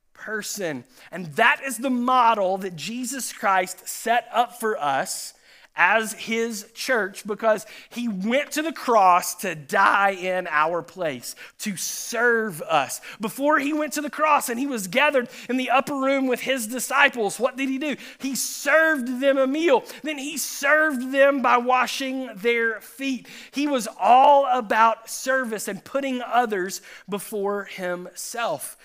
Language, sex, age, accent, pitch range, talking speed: English, male, 30-49, American, 185-255 Hz, 155 wpm